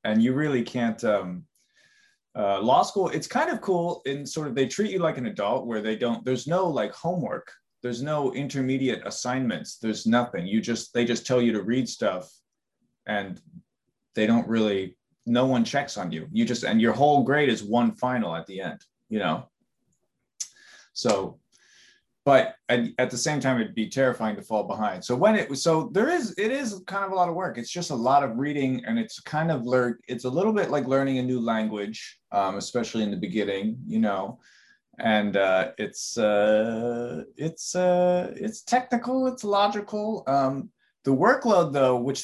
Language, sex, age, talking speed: English, male, 30-49, 190 wpm